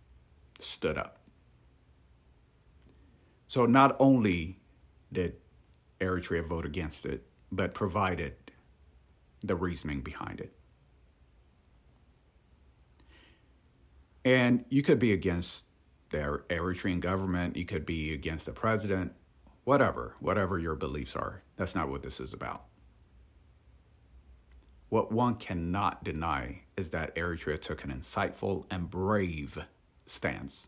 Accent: American